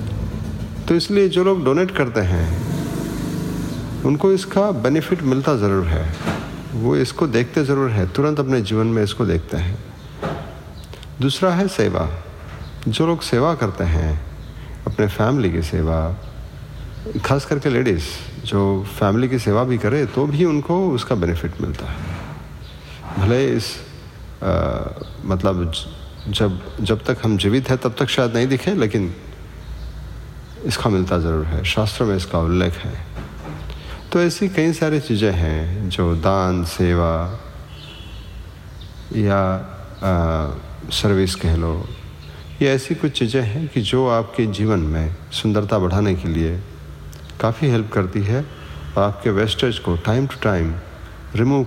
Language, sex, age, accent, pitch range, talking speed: Hindi, male, 50-69, native, 85-125 Hz, 135 wpm